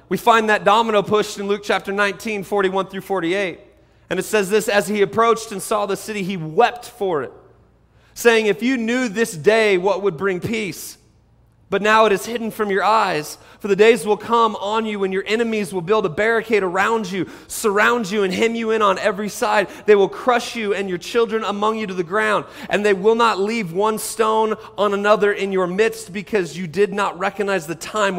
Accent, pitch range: American, 190-225 Hz